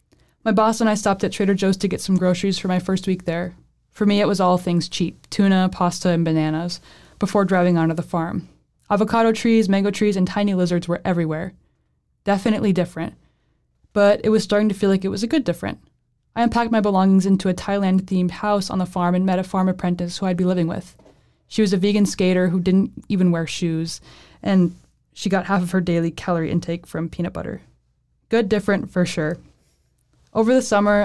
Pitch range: 175-210 Hz